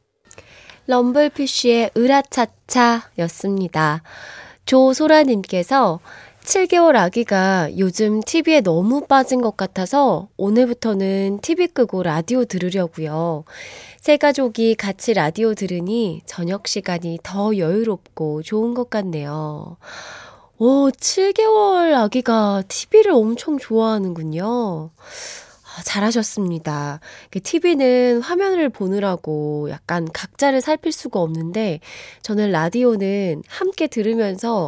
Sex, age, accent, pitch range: female, 20-39, native, 180-275 Hz